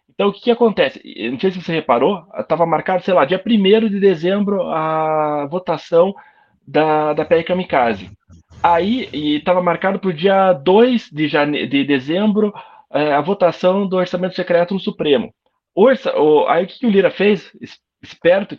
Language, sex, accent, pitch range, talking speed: Portuguese, male, Brazilian, 160-220 Hz, 170 wpm